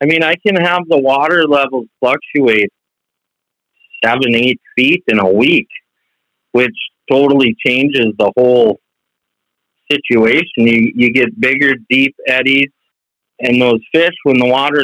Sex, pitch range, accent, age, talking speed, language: male, 115-140 Hz, American, 40-59, 135 wpm, English